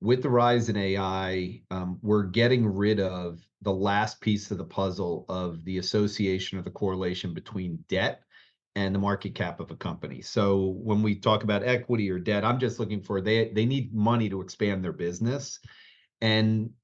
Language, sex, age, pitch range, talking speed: English, male, 40-59, 95-120 Hz, 185 wpm